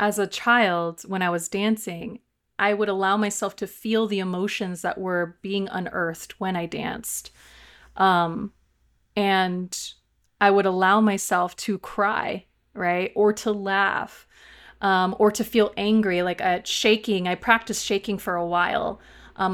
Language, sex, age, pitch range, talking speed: English, female, 30-49, 185-210 Hz, 145 wpm